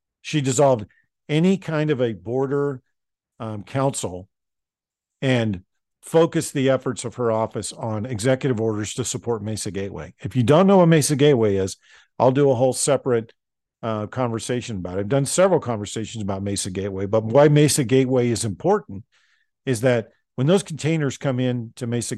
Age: 50-69